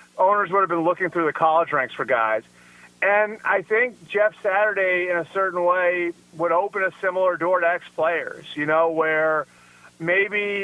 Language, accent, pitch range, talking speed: English, American, 160-195 Hz, 175 wpm